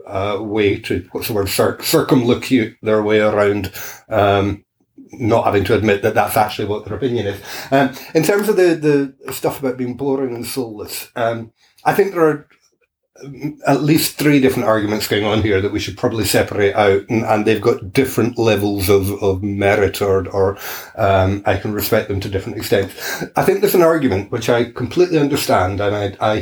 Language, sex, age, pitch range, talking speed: English, male, 30-49, 100-135 Hz, 190 wpm